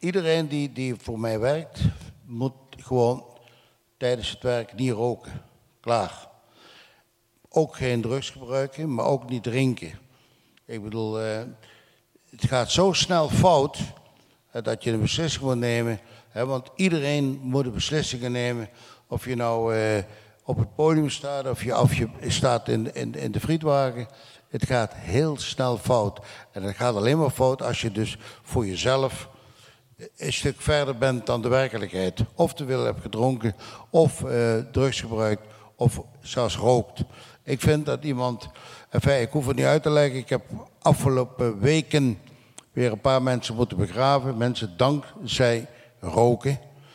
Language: Dutch